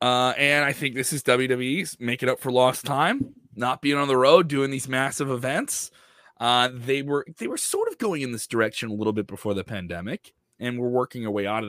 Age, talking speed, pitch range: 30-49, 235 wpm, 105-140 Hz